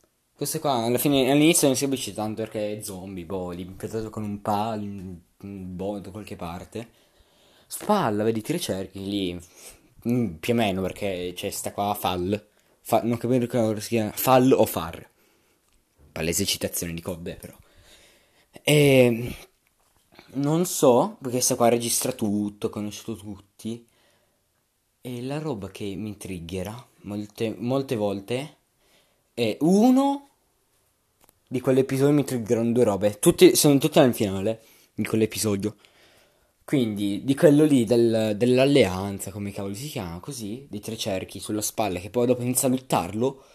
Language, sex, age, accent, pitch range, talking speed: Italian, male, 20-39, native, 100-130 Hz, 145 wpm